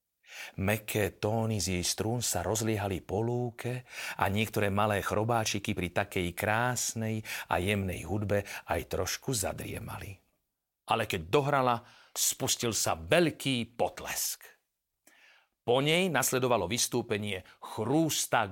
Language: Slovak